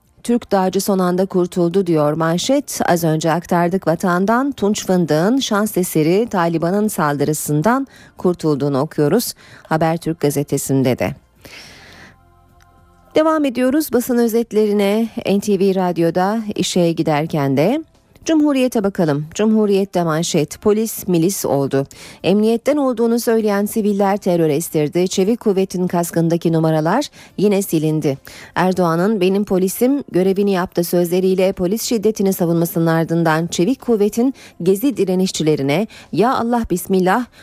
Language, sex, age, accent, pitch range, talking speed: Turkish, female, 40-59, native, 160-215 Hz, 105 wpm